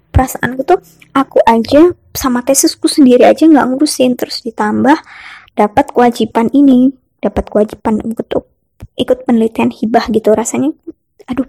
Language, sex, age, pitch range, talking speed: Indonesian, male, 20-39, 225-275 Hz, 125 wpm